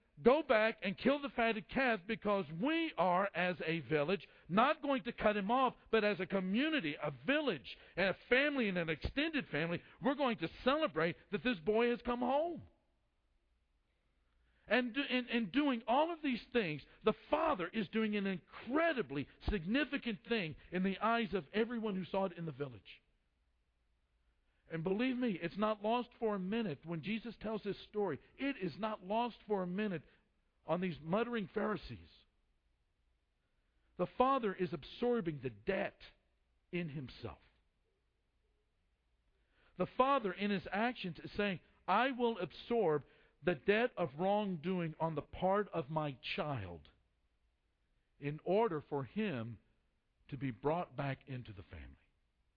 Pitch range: 150-230 Hz